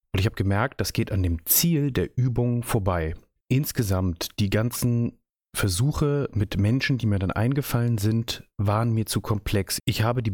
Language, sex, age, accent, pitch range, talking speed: German, male, 30-49, German, 100-125 Hz, 175 wpm